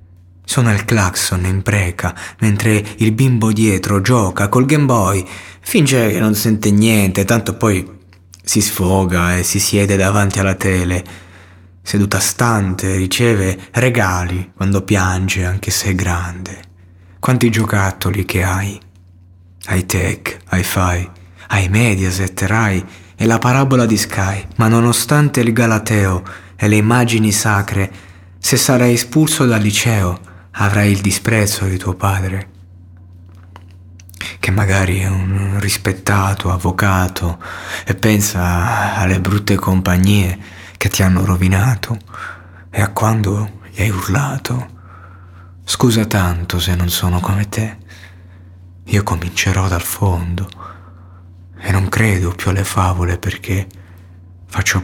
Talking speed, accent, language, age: 125 wpm, native, Italian, 20-39